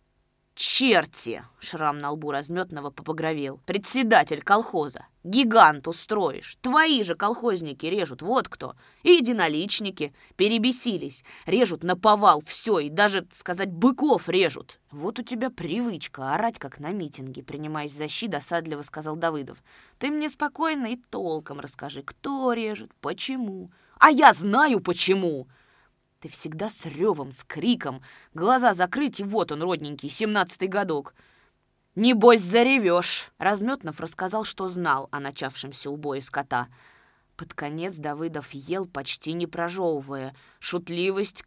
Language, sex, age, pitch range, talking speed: Russian, female, 20-39, 150-205 Hz, 125 wpm